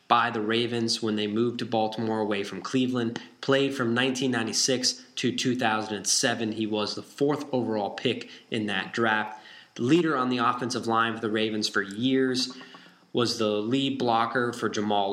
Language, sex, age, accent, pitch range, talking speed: English, male, 20-39, American, 110-130 Hz, 165 wpm